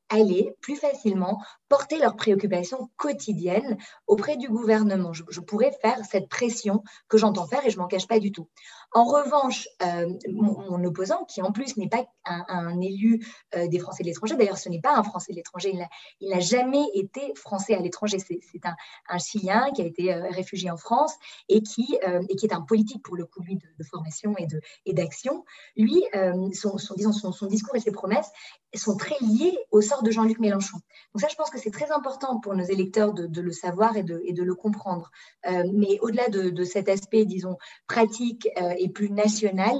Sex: female